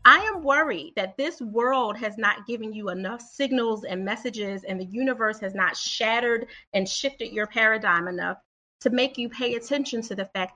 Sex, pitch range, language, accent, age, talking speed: female, 210-275 Hz, English, American, 30-49, 190 wpm